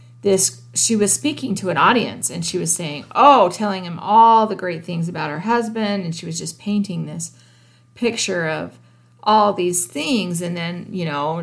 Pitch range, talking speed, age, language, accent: 165-215 Hz, 190 wpm, 40-59, English, American